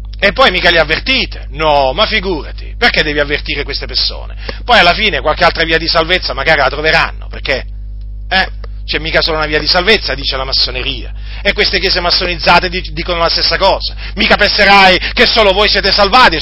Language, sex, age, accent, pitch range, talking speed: Italian, male, 40-59, native, 165-210 Hz, 185 wpm